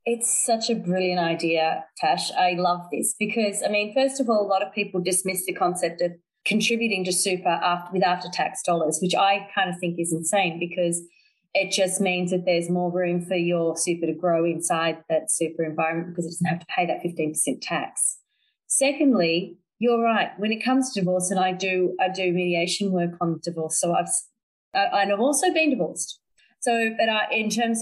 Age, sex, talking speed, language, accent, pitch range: 30-49, female, 200 wpm, English, Australian, 175-220 Hz